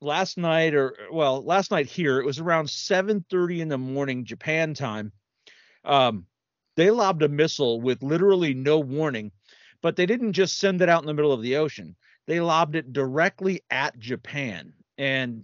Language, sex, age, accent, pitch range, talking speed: English, male, 40-59, American, 130-180 Hz, 175 wpm